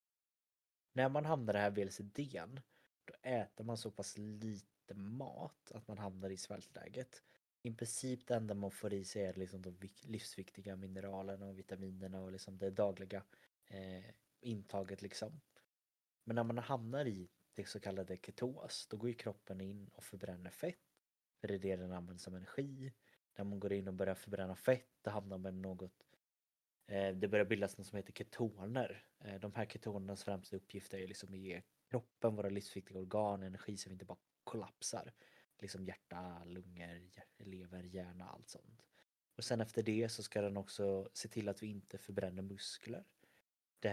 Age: 20-39